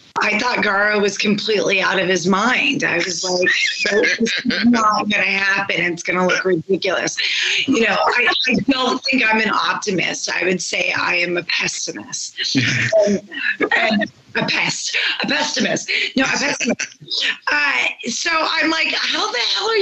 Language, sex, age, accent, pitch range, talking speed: English, female, 30-49, American, 200-280 Hz, 165 wpm